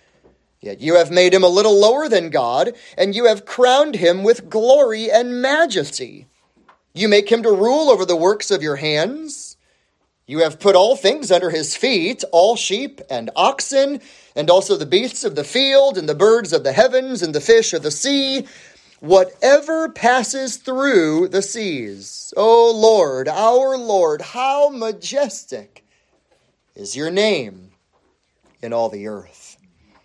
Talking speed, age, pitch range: 160 wpm, 30-49, 150-230 Hz